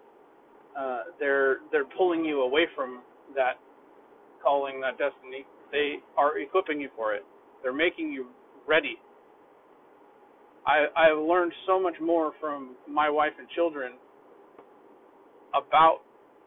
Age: 30-49